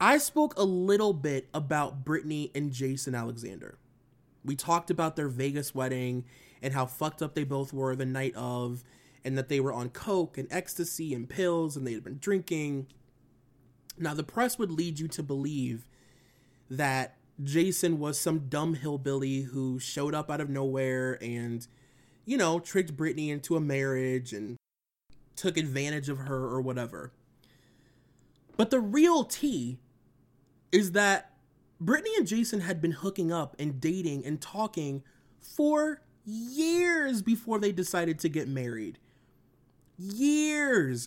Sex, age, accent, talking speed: male, 20-39, American, 150 wpm